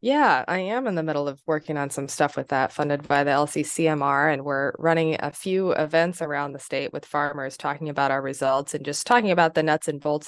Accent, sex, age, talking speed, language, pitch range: American, female, 20-39, 235 wpm, English, 140-170 Hz